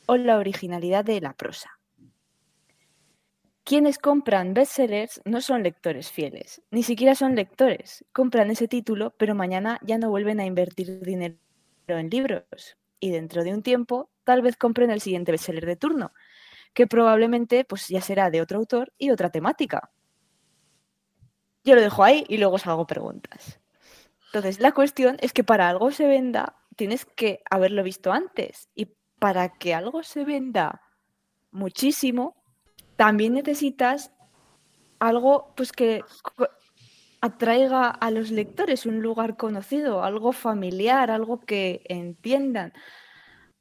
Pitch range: 195-255 Hz